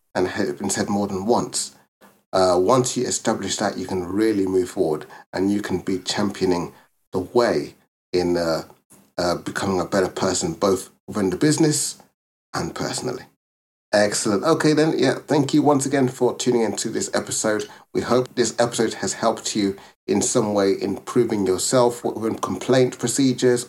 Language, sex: English, male